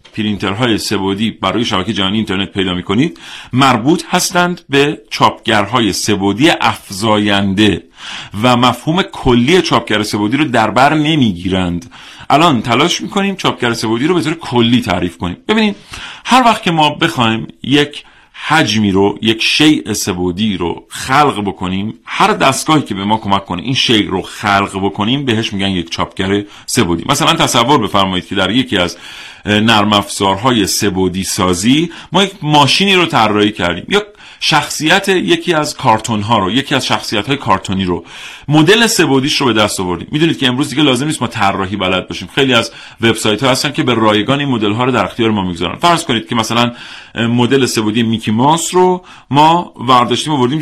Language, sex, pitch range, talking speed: Persian, male, 100-150 Hz, 165 wpm